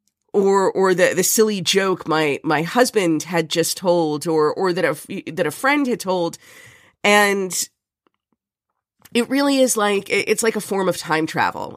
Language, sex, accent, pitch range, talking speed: English, female, American, 160-195 Hz, 170 wpm